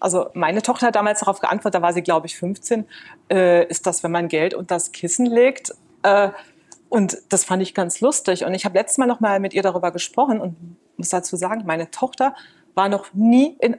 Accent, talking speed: German, 220 wpm